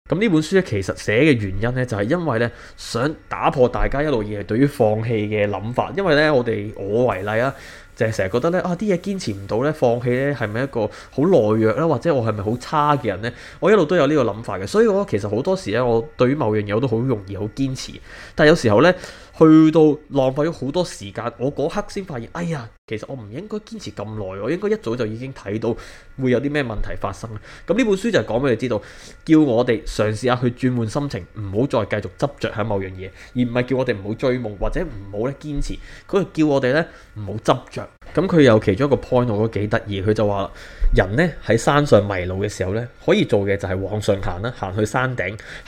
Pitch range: 105-145 Hz